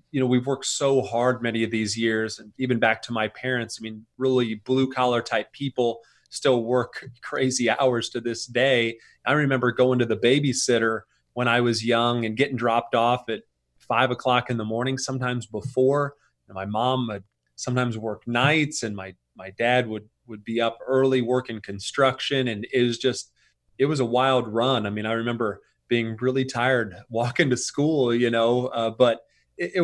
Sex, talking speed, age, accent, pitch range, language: male, 190 wpm, 30-49, American, 115-130 Hz, English